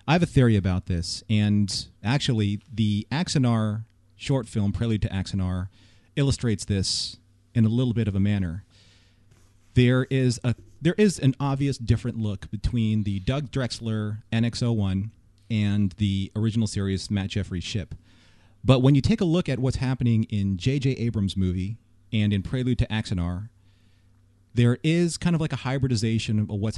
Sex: male